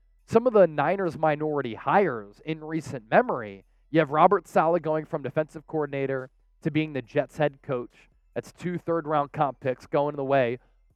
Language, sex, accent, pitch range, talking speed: English, male, American, 130-170 Hz, 175 wpm